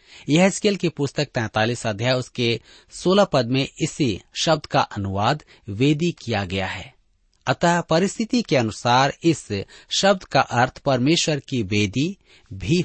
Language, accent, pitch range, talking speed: Hindi, native, 110-165 Hz, 145 wpm